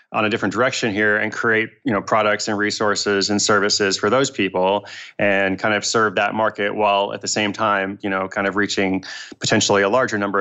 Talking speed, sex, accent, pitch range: 215 wpm, male, American, 95-110 Hz